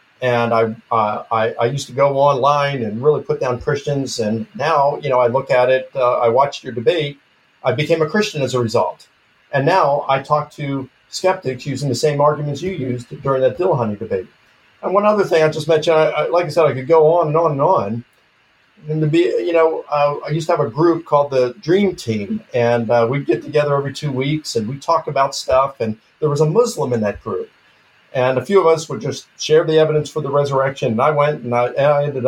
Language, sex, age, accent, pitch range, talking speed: English, male, 50-69, American, 125-155 Hz, 240 wpm